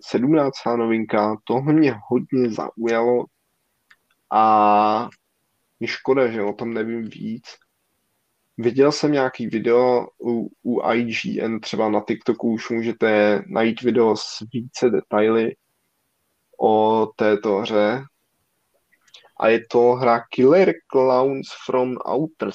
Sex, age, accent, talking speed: male, 20-39, native, 110 wpm